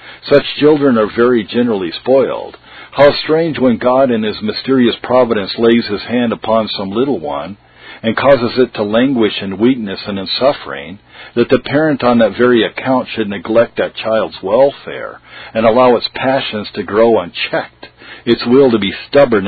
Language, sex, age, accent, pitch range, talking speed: English, male, 50-69, American, 110-130 Hz, 170 wpm